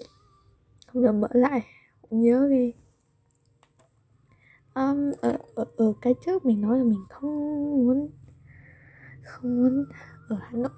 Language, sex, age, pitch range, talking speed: Vietnamese, female, 20-39, 215-270 Hz, 120 wpm